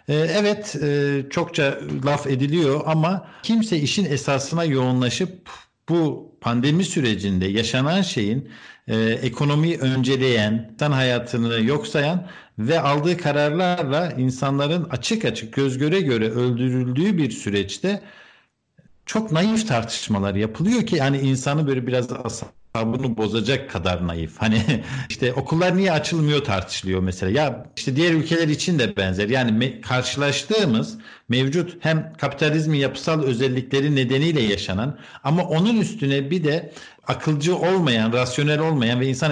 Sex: male